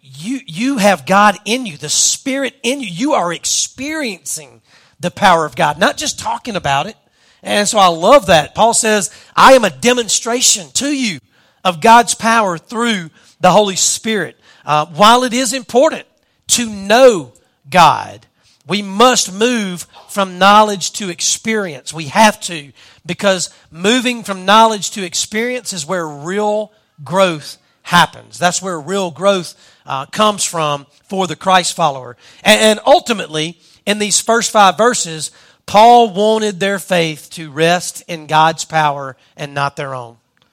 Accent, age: American, 40-59